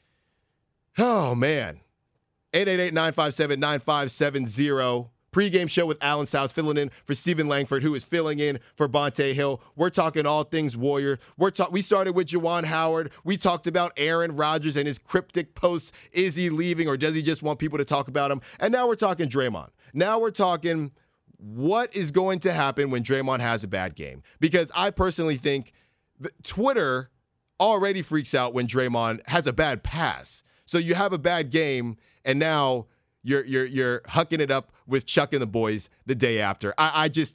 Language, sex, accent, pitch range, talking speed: English, male, American, 125-170 Hz, 180 wpm